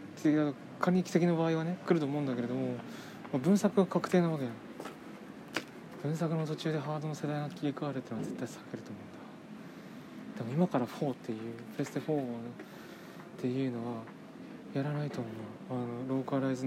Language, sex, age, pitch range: Japanese, male, 20-39, 120-160 Hz